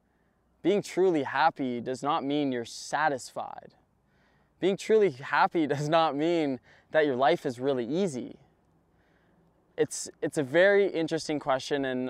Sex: male